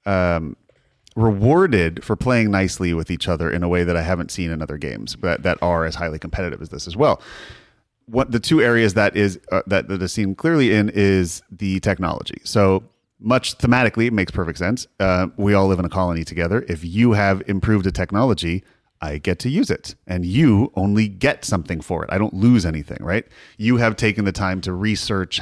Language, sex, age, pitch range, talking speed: English, male, 30-49, 90-110 Hz, 210 wpm